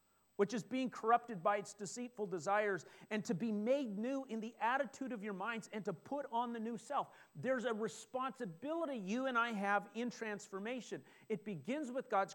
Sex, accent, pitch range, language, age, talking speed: male, American, 170-225 Hz, English, 40-59, 190 wpm